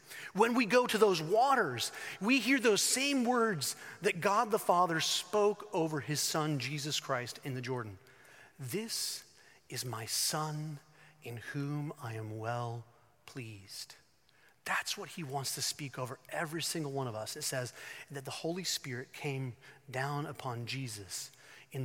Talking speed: 155 wpm